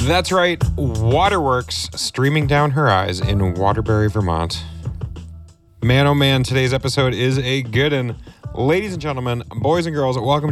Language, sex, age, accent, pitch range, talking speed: English, male, 30-49, American, 110-140 Hz, 150 wpm